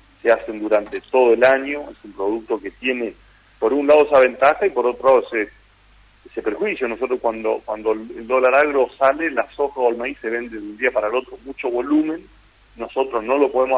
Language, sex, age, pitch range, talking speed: Spanish, male, 40-59, 115-145 Hz, 215 wpm